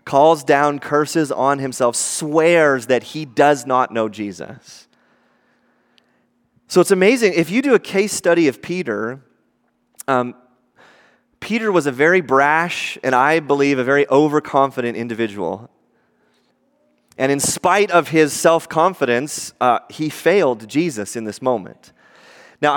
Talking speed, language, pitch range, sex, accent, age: 130 wpm, English, 130-170 Hz, male, American, 30-49